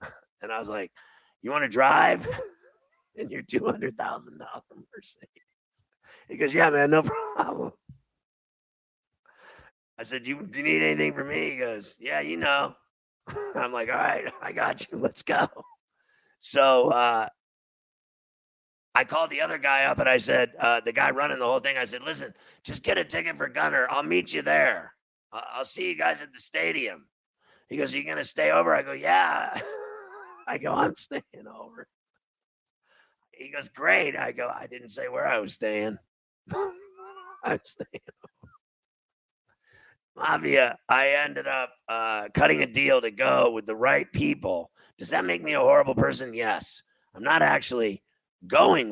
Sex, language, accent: male, English, American